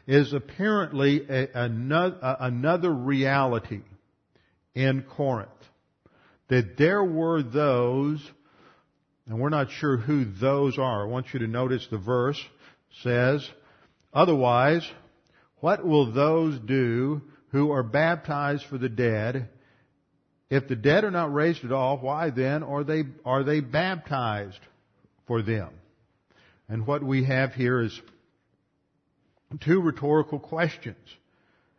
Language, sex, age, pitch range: English, male, 50-69, 120-150 Hz